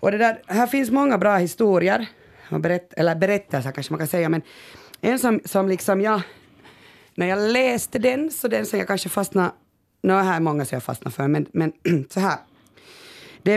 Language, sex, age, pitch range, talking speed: Swedish, female, 30-49, 160-225 Hz, 190 wpm